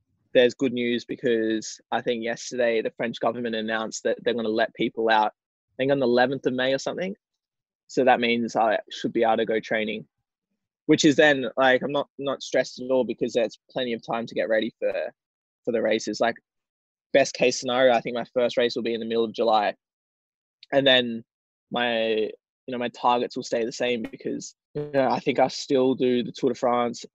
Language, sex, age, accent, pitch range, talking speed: English, male, 20-39, Australian, 115-130 Hz, 215 wpm